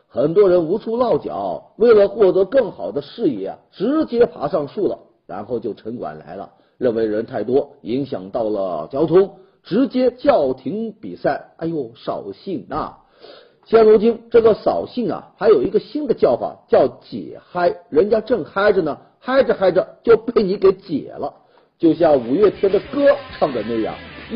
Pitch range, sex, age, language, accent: 185-290 Hz, male, 50-69, Chinese, native